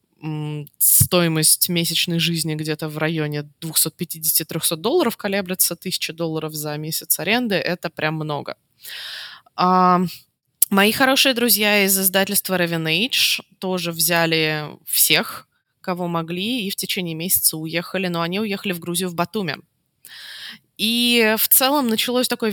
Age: 20-39